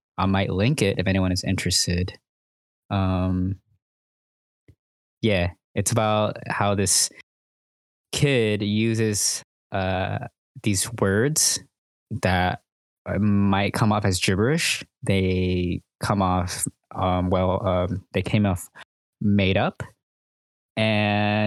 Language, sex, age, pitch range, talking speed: English, male, 20-39, 90-110 Hz, 105 wpm